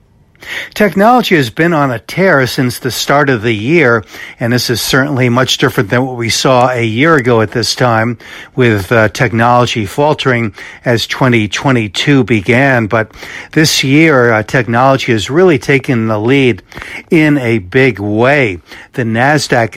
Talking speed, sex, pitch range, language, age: 155 wpm, male, 115-140 Hz, English, 60-79